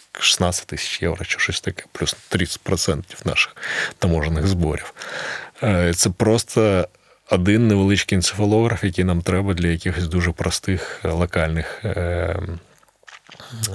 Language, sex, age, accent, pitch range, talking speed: Ukrainian, male, 20-39, native, 90-105 Hz, 100 wpm